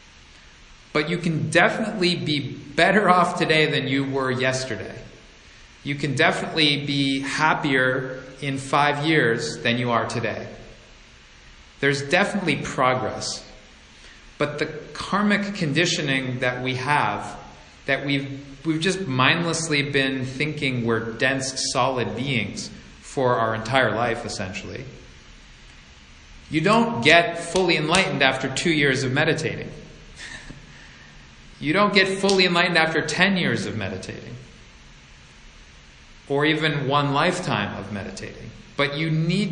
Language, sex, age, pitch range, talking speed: English, male, 40-59, 115-165 Hz, 120 wpm